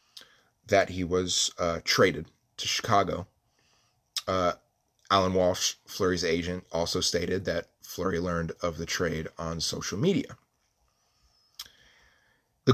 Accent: American